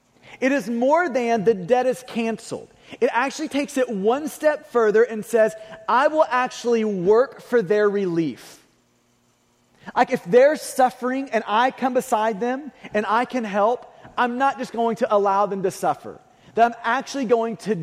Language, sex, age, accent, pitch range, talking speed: English, male, 30-49, American, 200-255 Hz, 170 wpm